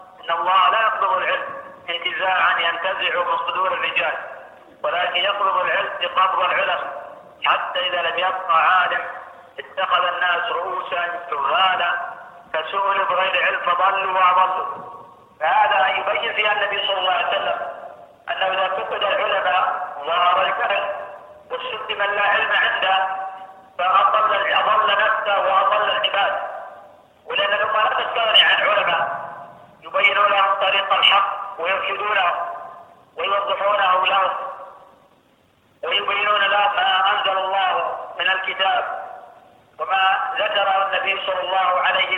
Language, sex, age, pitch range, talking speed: Arabic, male, 50-69, 185-210 Hz, 110 wpm